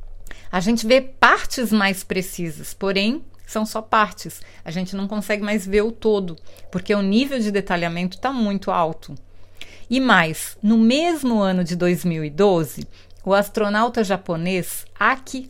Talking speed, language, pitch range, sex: 145 wpm, Portuguese, 170-230 Hz, female